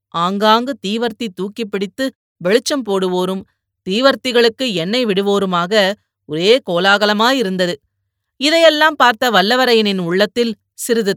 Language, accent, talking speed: Tamil, native, 85 wpm